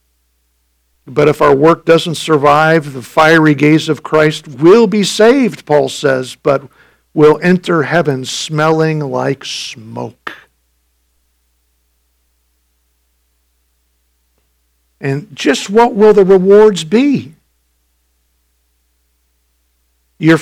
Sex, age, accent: male, 50-69, American